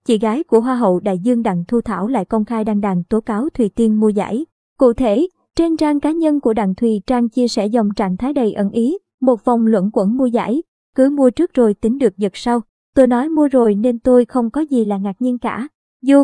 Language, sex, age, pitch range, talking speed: Vietnamese, male, 20-39, 220-265 Hz, 250 wpm